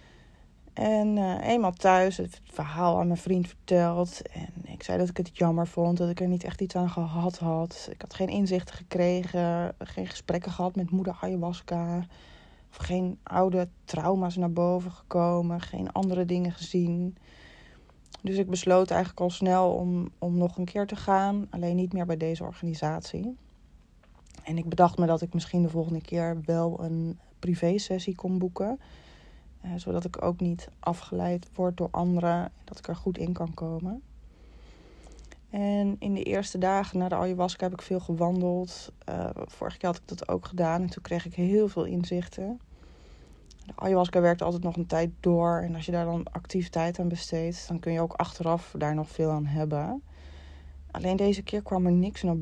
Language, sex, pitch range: Dutch, female, 165-185 Hz